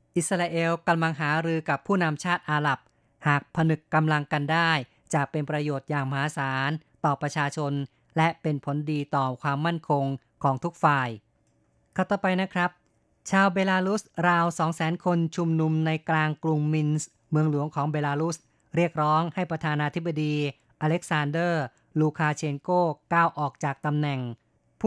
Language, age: Thai, 20-39